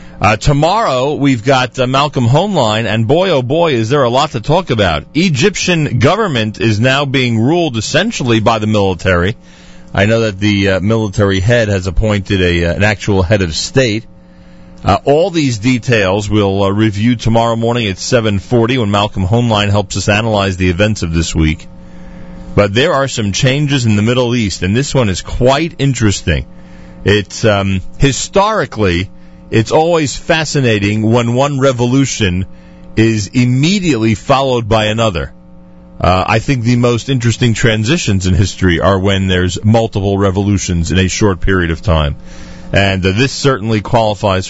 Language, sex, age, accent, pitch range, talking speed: English, male, 40-59, American, 90-120 Hz, 160 wpm